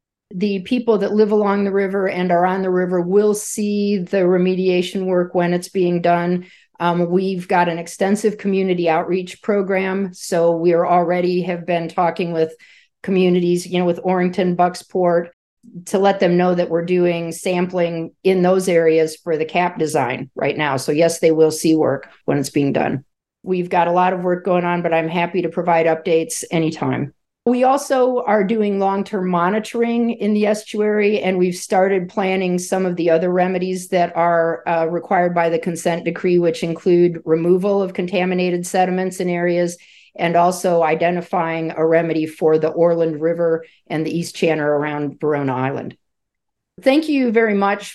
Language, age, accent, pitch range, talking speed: English, 50-69, American, 165-190 Hz, 175 wpm